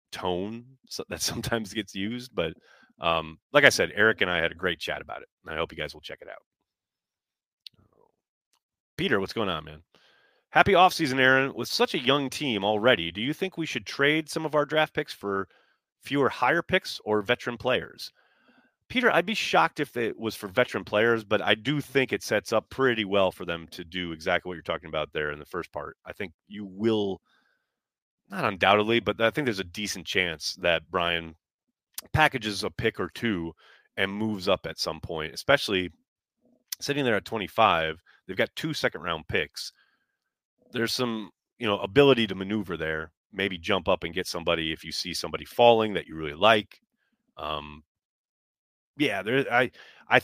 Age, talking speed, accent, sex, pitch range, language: 30-49, 190 wpm, American, male, 90-130 Hz, English